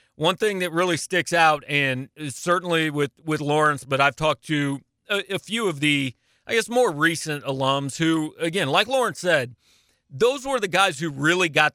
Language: English